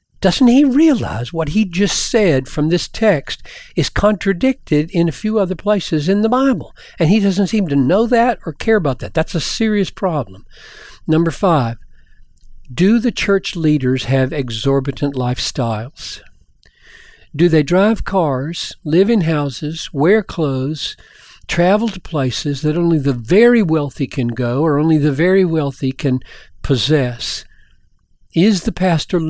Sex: male